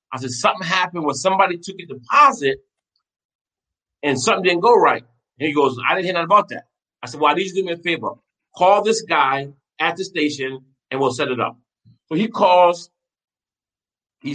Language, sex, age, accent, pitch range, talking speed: English, male, 30-49, American, 140-205 Hz, 200 wpm